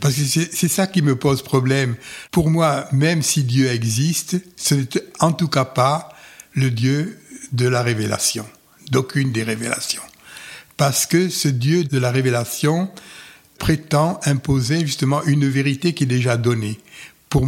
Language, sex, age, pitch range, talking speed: French, male, 60-79, 120-150 Hz, 160 wpm